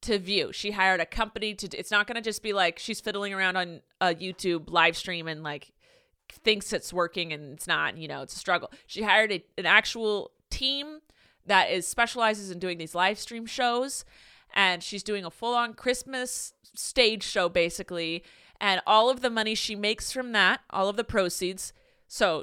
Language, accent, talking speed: English, American, 195 wpm